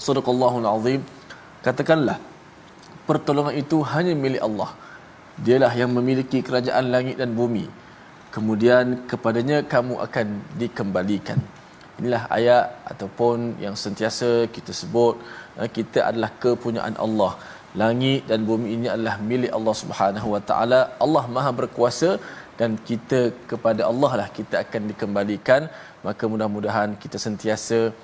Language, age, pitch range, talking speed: Malayalam, 20-39, 110-130 Hz, 120 wpm